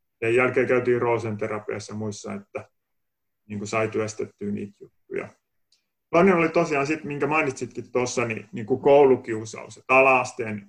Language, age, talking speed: Finnish, 30-49, 145 wpm